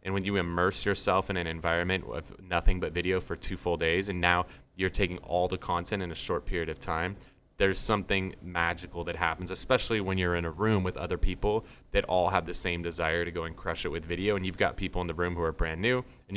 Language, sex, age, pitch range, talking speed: English, male, 20-39, 85-100 Hz, 250 wpm